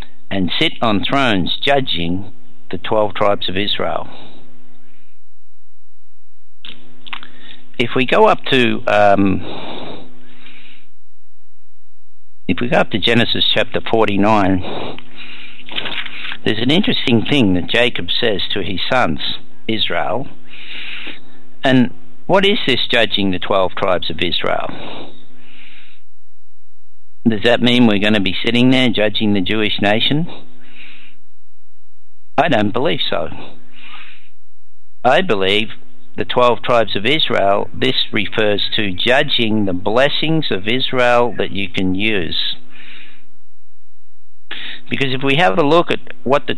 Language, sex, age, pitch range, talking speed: English, male, 60-79, 100-125 Hz, 115 wpm